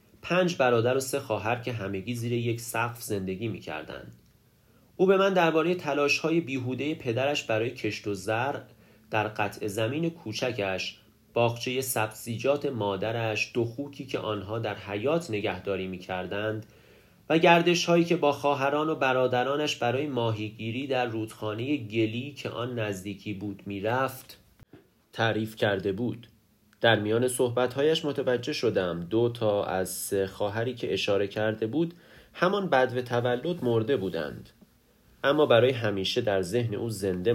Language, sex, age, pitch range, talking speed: Persian, male, 30-49, 105-135 Hz, 145 wpm